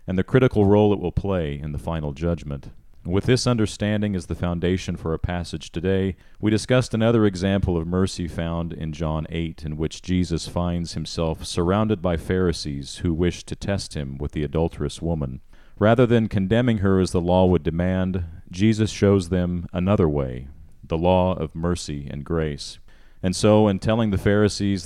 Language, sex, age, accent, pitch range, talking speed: English, male, 40-59, American, 80-100 Hz, 180 wpm